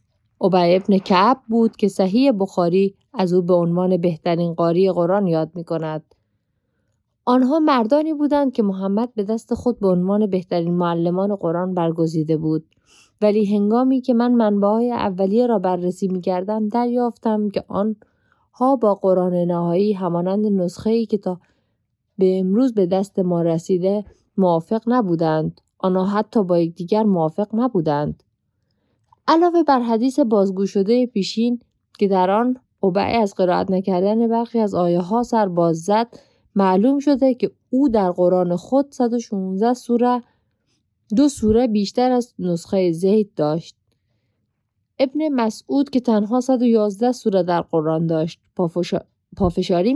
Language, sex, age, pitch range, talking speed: Persian, female, 20-39, 175-225 Hz, 130 wpm